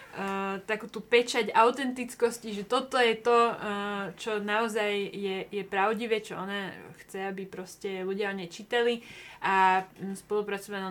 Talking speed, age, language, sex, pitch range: 140 wpm, 20-39, Slovak, female, 195-235 Hz